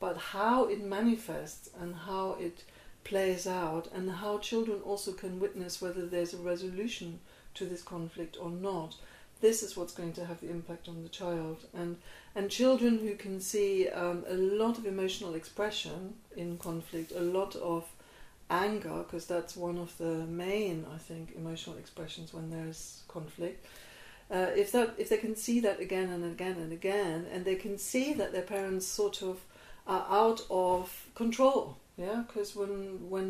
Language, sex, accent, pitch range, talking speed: English, female, British, 170-205 Hz, 175 wpm